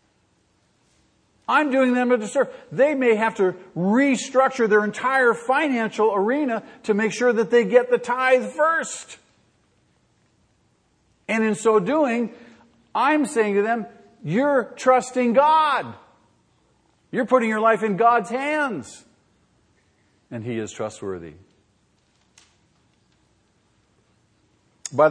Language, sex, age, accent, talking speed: English, male, 50-69, American, 110 wpm